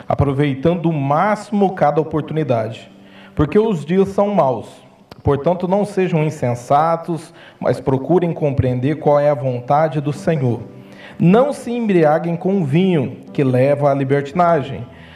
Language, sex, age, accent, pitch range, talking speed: Portuguese, male, 40-59, Brazilian, 130-175 Hz, 125 wpm